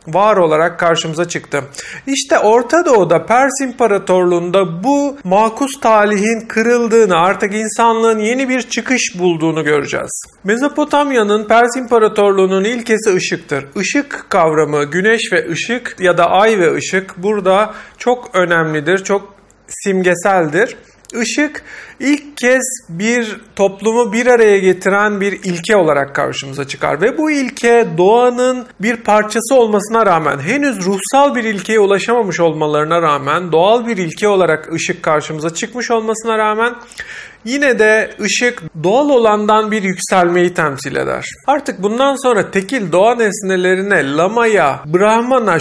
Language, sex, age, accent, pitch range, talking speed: Turkish, male, 40-59, native, 180-240 Hz, 125 wpm